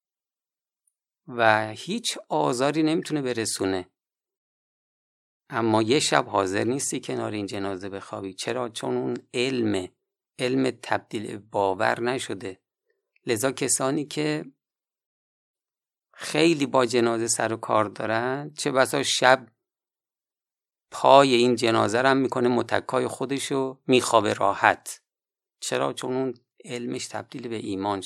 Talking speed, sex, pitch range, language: 110 wpm, male, 115-160 Hz, Persian